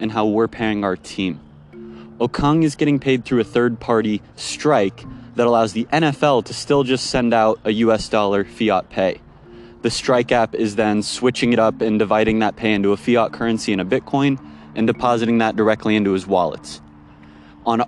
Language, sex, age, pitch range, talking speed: English, male, 20-39, 100-120 Hz, 190 wpm